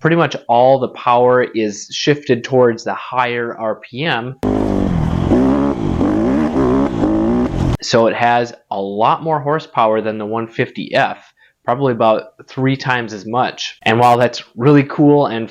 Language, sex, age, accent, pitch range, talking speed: English, male, 20-39, American, 110-135 Hz, 130 wpm